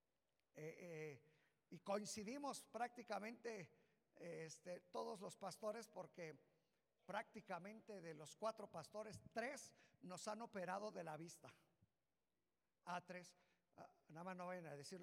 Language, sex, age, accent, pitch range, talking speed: Spanish, male, 50-69, Mexican, 160-200 Hz, 125 wpm